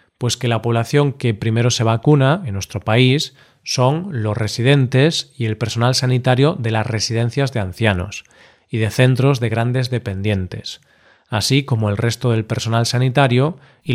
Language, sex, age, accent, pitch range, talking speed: Spanish, male, 40-59, Spanish, 115-135 Hz, 160 wpm